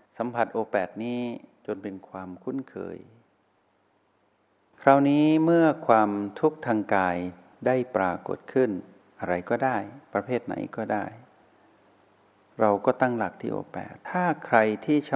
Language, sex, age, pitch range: Thai, male, 60-79, 95-125 Hz